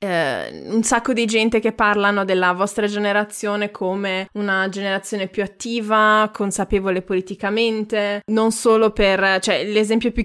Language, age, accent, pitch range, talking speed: Italian, 20-39, native, 185-215 Hz, 130 wpm